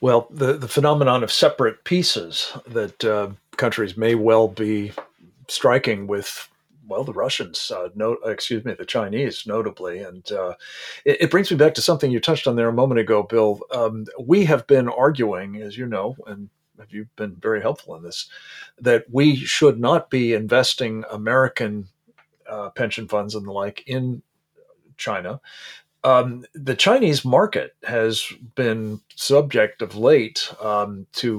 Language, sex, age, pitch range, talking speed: English, male, 40-59, 105-135 Hz, 160 wpm